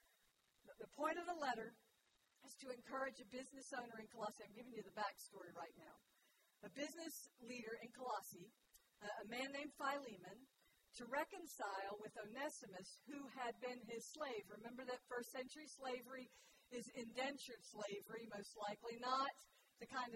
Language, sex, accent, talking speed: English, female, American, 150 wpm